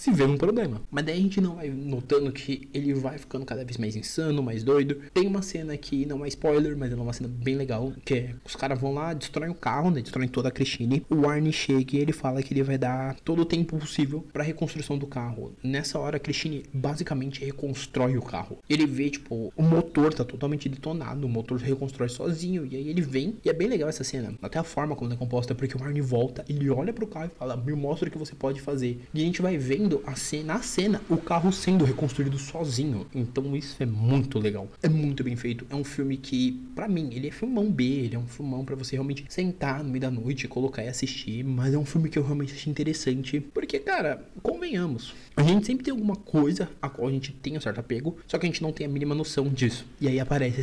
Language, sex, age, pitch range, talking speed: Portuguese, male, 20-39, 125-150 Hz, 245 wpm